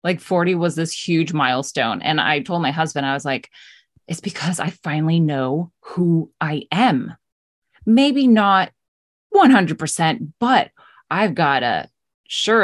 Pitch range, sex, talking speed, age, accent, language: 145-170 Hz, female, 140 wpm, 20-39, American, English